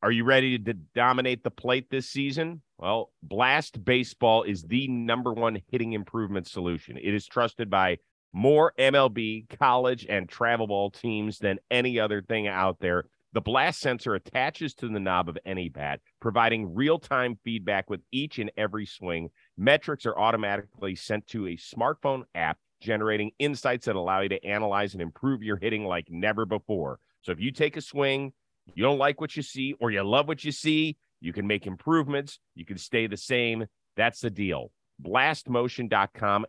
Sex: male